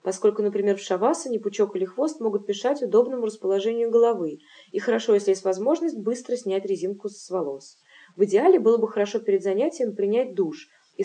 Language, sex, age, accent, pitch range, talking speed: Russian, female, 20-39, native, 185-240 Hz, 175 wpm